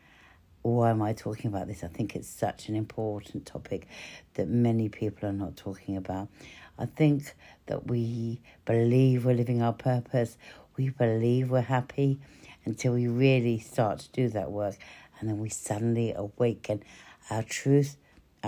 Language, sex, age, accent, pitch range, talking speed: English, female, 60-79, British, 110-125 Hz, 155 wpm